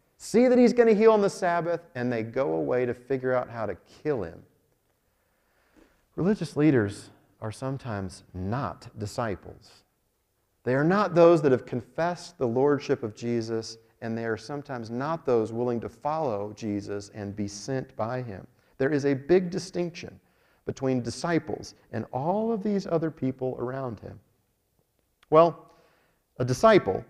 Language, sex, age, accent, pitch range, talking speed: English, male, 40-59, American, 115-160 Hz, 155 wpm